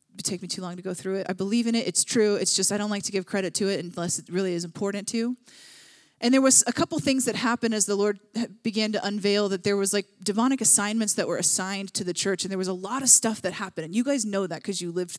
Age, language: 20-39, English